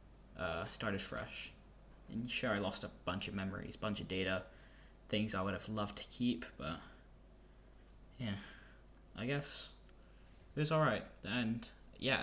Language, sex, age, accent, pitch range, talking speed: English, male, 10-29, British, 95-125 Hz, 145 wpm